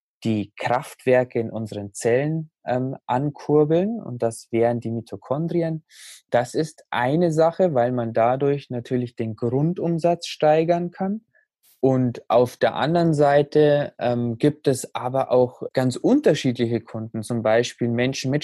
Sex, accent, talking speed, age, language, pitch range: male, German, 135 wpm, 20-39, German, 115-140 Hz